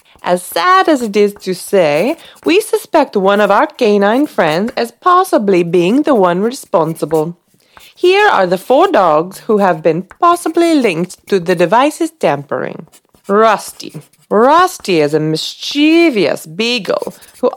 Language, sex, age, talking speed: English, female, 30-49, 140 wpm